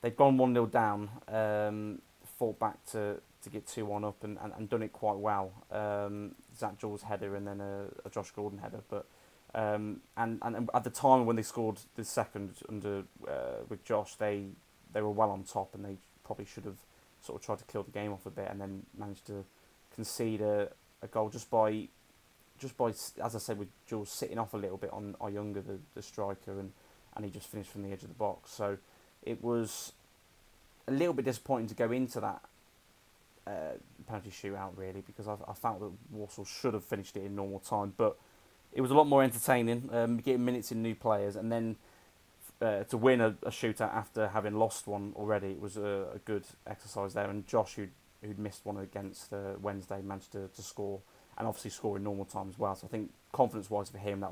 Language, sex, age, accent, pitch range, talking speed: English, male, 20-39, British, 100-110 Hz, 215 wpm